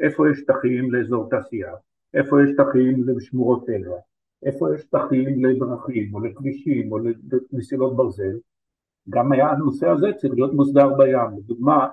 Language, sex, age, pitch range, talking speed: Hebrew, male, 50-69, 115-140 Hz, 140 wpm